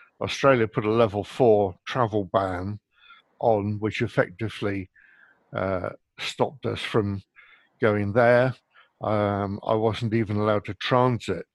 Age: 60-79